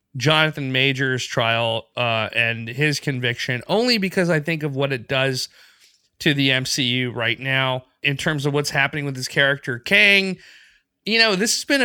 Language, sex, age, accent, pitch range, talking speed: English, male, 30-49, American, 130-170 Hz, 170 wpm